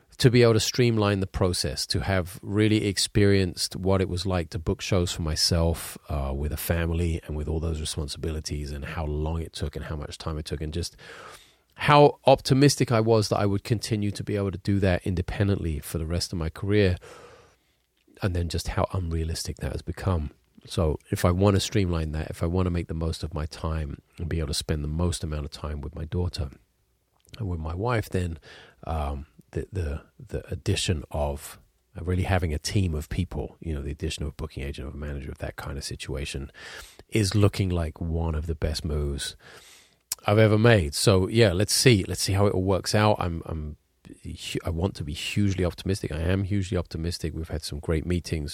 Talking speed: 215 wpm